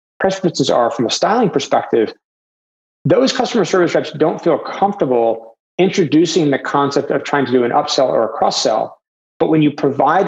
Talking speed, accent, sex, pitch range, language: 170 wpm, American, male, 125-155 Hz, English